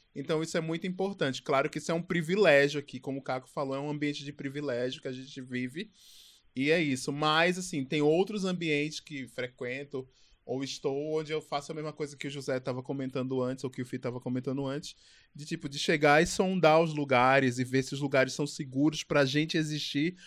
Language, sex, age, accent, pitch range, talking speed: Portuguese, male, 20-39, Brazilian, 135-160 Hz, 220 wpm